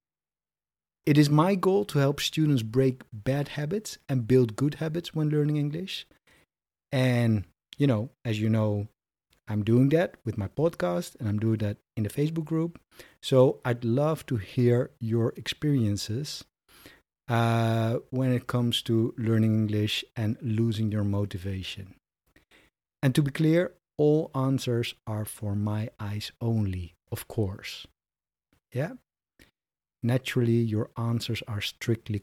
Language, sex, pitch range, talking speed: English, male, 105-145 Hz, 140 wpm